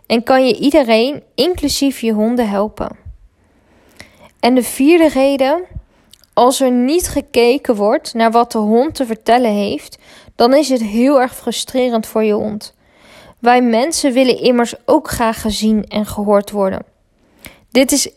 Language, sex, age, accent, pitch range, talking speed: Dutch, female, 20-39, Dutch, 220-265 Hz, 150 wpm